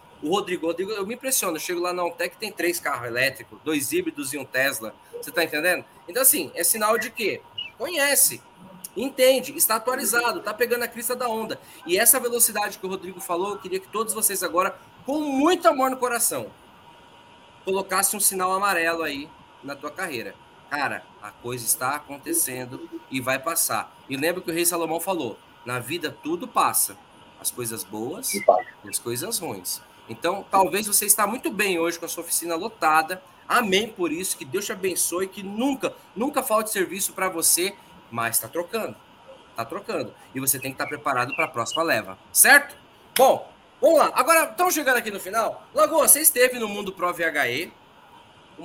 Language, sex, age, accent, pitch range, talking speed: Portuguese, male, 20-39, Brazilian, 165-260 Hz, 185 wpm